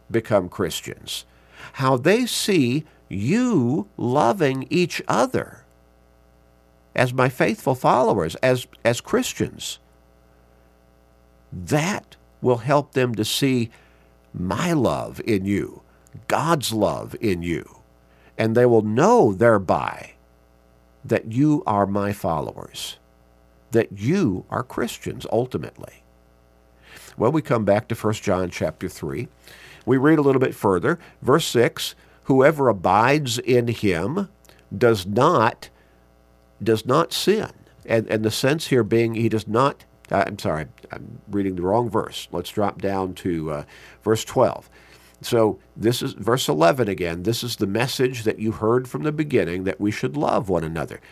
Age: 50-69